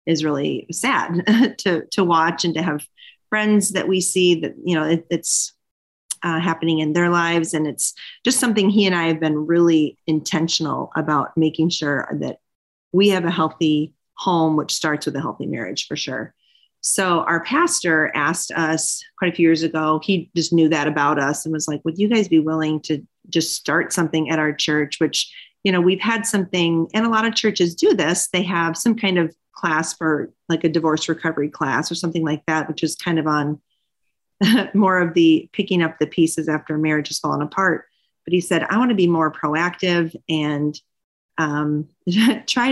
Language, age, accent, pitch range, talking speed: English, 30-49, American, 155-180 Hz, 195 wpm